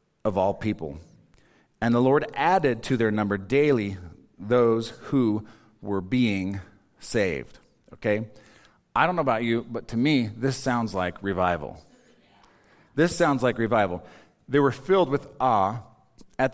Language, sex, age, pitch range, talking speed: English, male, 40-59, 105-140 Hz, 140 wpm